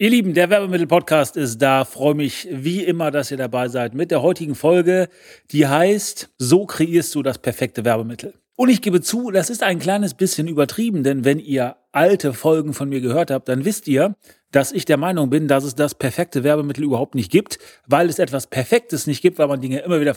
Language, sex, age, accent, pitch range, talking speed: German, male, 30-49, German, 130-170 Hz, 215 wpm